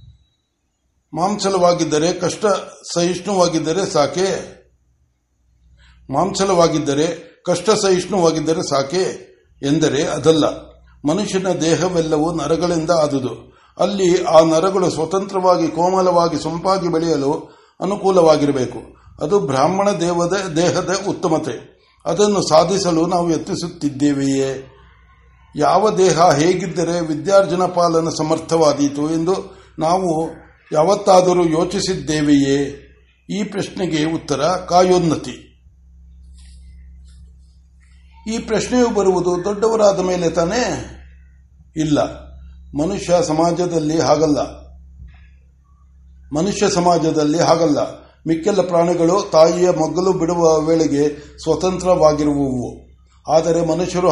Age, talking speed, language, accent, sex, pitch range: 60-79, 70 wpm, Kannada, native, male, 140-180 Hz